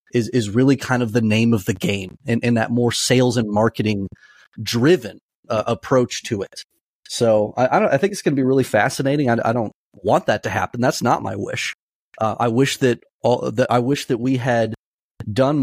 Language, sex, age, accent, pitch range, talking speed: English, male, 30-49, American, 110-130 Hz, 220 wpm